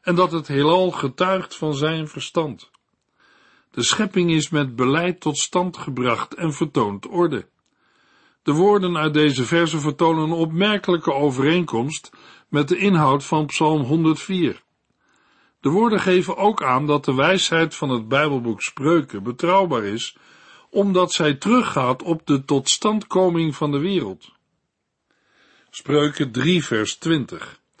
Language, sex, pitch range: Dutch, male, 140-180 Hz